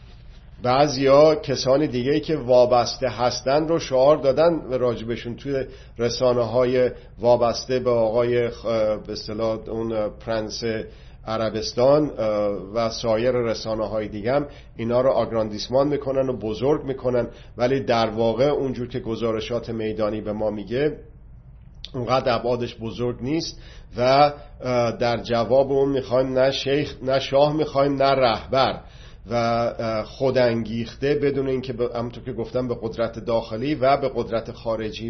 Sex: male